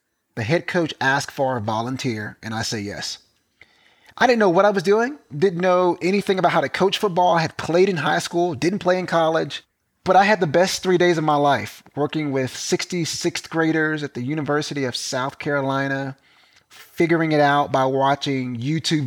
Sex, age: male, 30-49